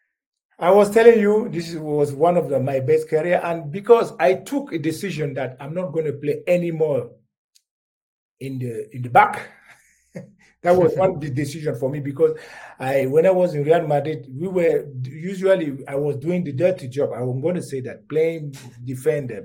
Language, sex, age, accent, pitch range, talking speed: English, male, 50-69, Nigerian, 135-180 Hz, 185 wpm